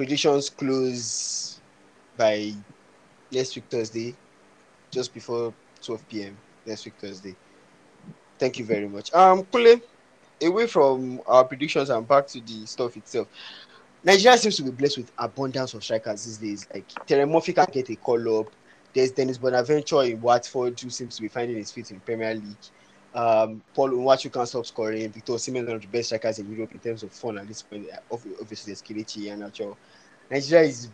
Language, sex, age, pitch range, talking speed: English, male, 20-39, 110-140 Hz, 175 wpm